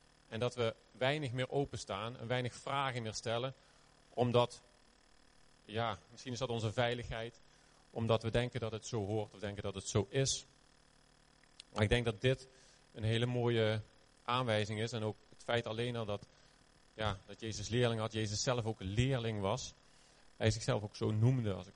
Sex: male